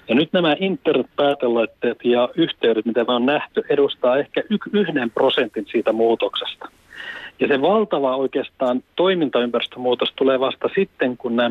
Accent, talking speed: native, 135 wpm